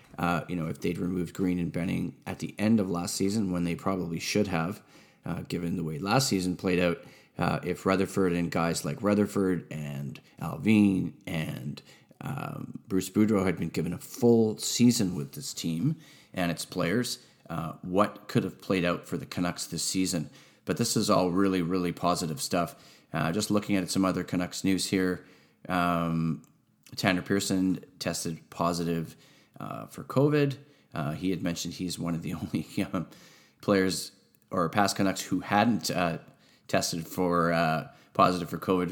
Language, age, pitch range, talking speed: English, 30-49, 85-105 Hz, 175 wpm